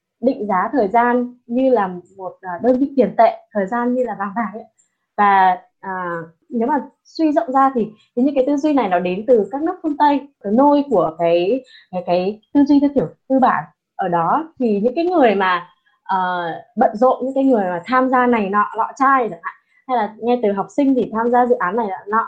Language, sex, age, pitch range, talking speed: Vietnamese, female, 20-39, 195-265 Hz, 220 wpm